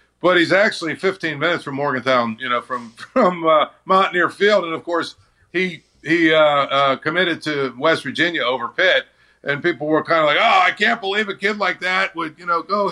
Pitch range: 155-195 Hz